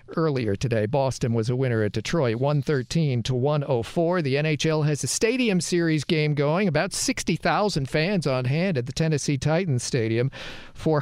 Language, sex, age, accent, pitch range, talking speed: English, male, 50-69, American, 135-175 Hz, 170 wpm